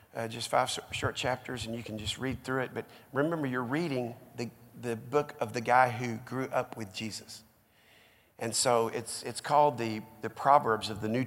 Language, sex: English, male